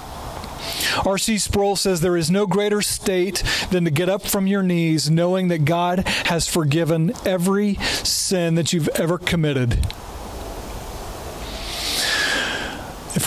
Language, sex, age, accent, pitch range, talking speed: English, male, 40-59, American, 155-190 Hz, 120 wpm